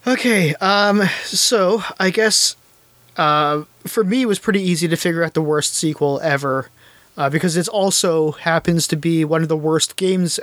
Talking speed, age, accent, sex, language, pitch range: 180 wpm, 20-39, American, male, English, 160-195 Hz